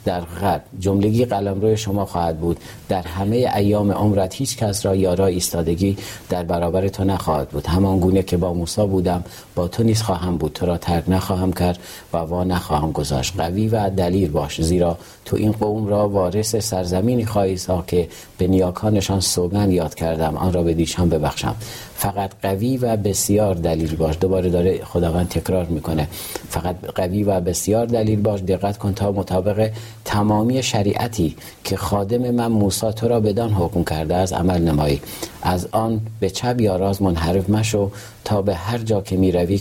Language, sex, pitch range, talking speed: Persian, male, 90-110 Hz, 175 wpm